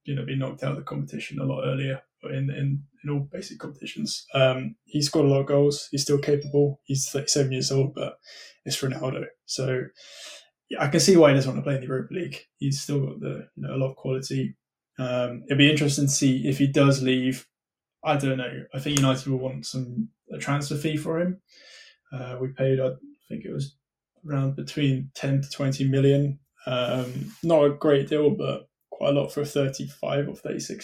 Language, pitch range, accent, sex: English, 135-145 Hz, British, male